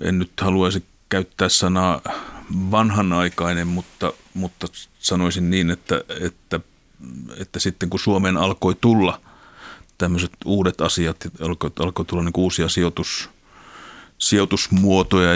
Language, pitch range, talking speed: Finnish, 85-95 Hz, 105 wpm